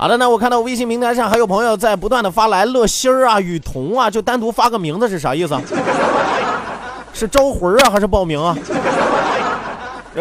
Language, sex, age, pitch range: Chinese, male, 30-49, 235-305 Hz